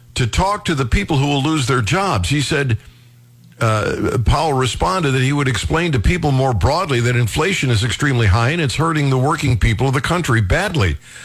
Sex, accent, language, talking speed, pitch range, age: male, American, English, 205 wpm, 115-140 Hz, 60-79